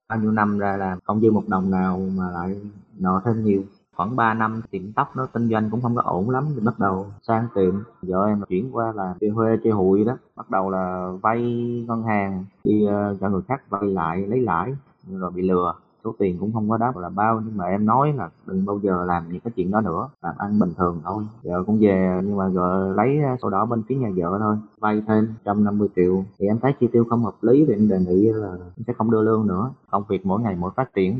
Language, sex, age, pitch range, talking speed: Vietnamese, male, 20-39, 95-120 Hz, 250 wpm